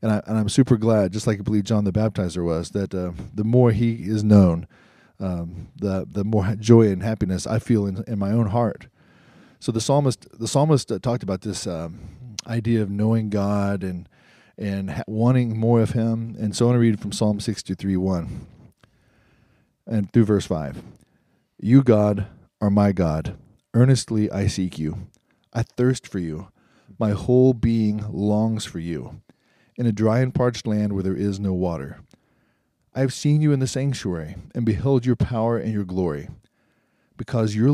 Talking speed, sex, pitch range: 180 wpm, male, 95-115 Hz